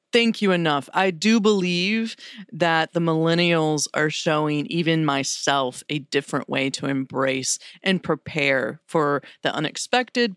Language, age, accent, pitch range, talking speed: English, 40-59, American, 145-180 Hz, 135 wpm